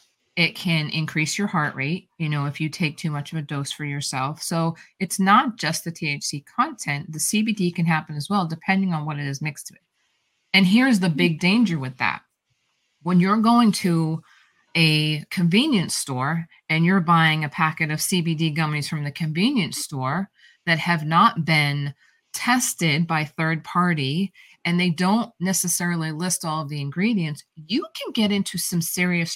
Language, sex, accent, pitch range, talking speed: English, female, American, 150-180 Hz, 180 wpm